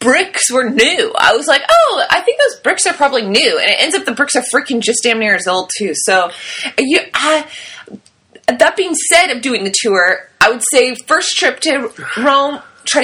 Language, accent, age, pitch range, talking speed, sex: English, American, 20-39, 200-265 Hz, 210 wpm, female